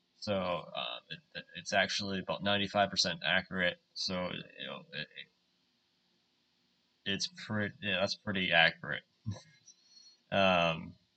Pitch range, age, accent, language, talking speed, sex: 90-110 Hz, 20-39, American, English, 105 wpm, male